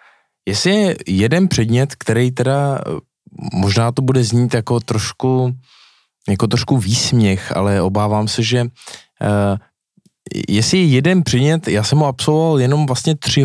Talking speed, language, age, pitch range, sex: 130 wpm, Czech, 20-39, 105-130 Hz, male